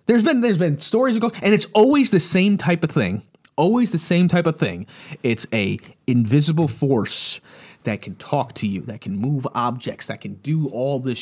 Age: 30-49